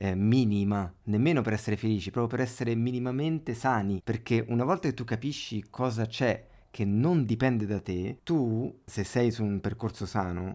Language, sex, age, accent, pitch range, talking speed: Italian, male, 30-49, native, 95-125 Hz, 175 wpm